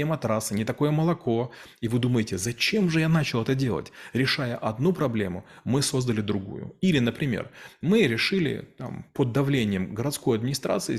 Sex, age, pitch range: male, 30-49, 110-140 Hz